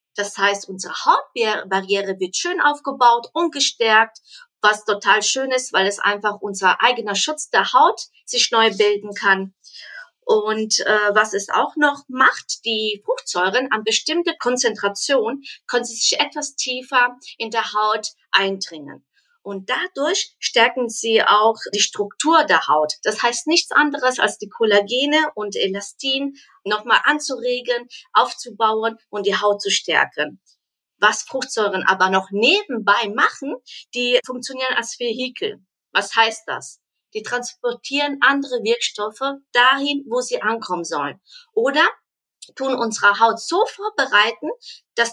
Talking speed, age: 135 wpm, 40-59